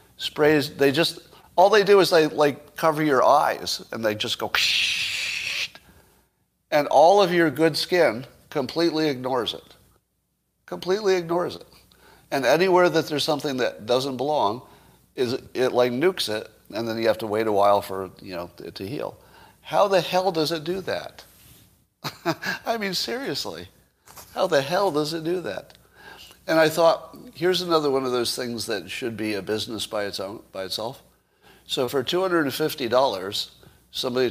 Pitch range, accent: 110-165 Hz, American